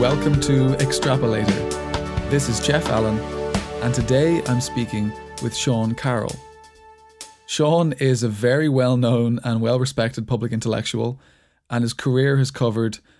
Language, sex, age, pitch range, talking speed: English, male, 20-39, 115-135 Hz, 125 wpm